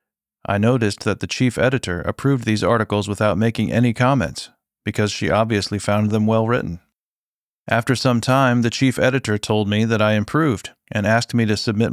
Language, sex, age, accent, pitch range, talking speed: English, male, 40-59, American, 105-125 Hz, 180 wpm